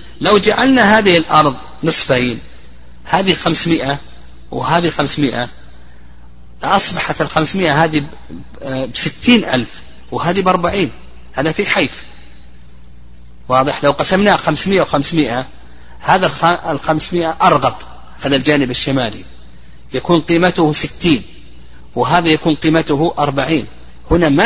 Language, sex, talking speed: Arabic, male, 100 wpm